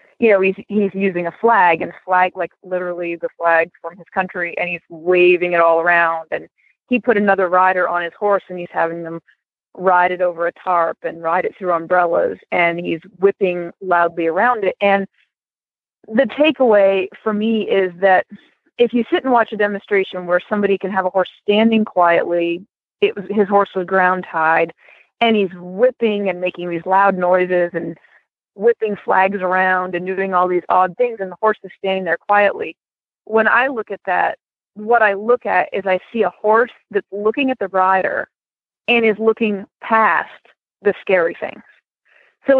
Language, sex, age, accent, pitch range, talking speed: English, female, 30-49, American, 180-215 Hz, 185 wpm